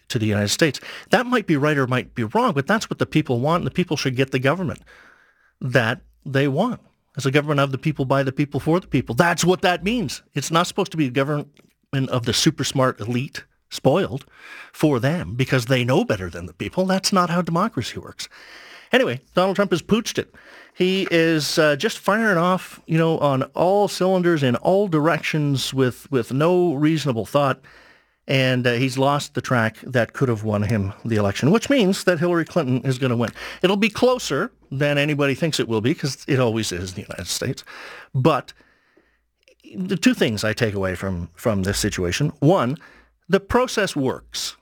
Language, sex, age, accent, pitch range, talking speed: English, male, 50-69, American, 120-175 Hz, 200 wpm